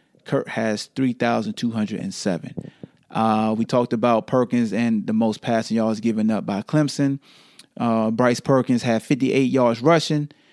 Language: English